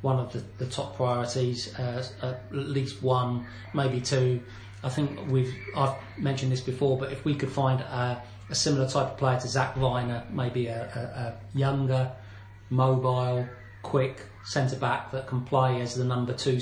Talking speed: 175 wpm